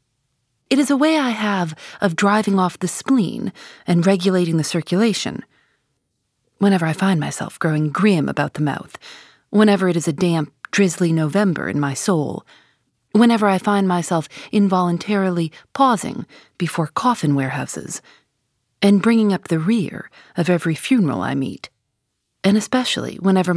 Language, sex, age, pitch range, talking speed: English, female, 30-49, 160-210 Hz, 145 wpm